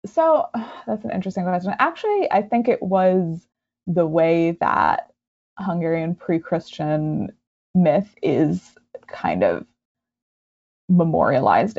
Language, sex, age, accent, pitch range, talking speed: English, female, 20-39, American, 175-245 Hz, 100 wpm